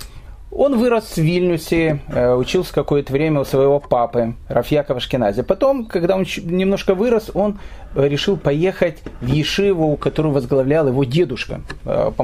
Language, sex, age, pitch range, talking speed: Russian, male, 30-49, 140-205 Hz, 125 wpm